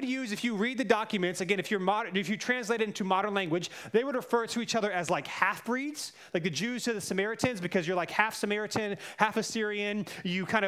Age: 30-49